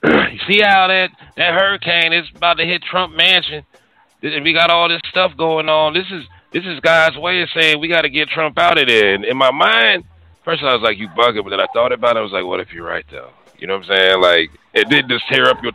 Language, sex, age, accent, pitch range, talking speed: English, male, 30-49, American, 105-170 Hz, 270 wpm